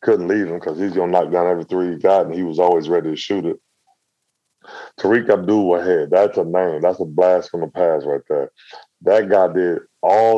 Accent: American